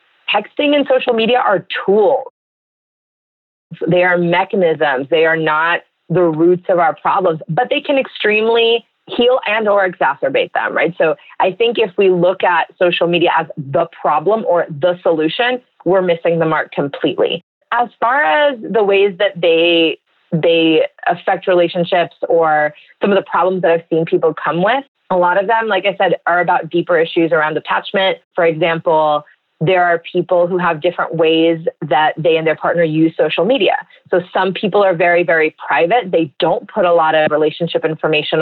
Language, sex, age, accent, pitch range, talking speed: English, female, 30-49, American, 165-200 Hz, 175 wpm